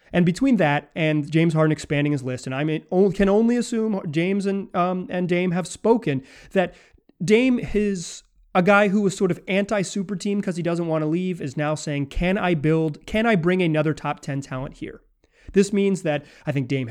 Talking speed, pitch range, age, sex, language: 205 wpm, 140-195 Hz, 30-49, male, English